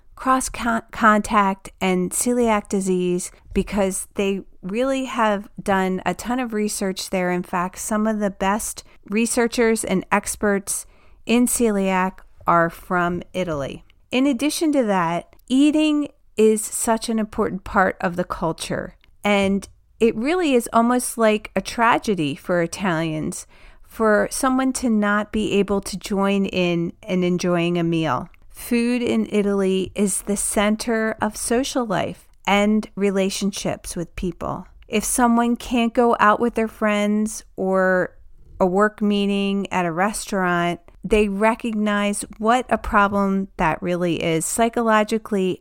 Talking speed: 135 wpm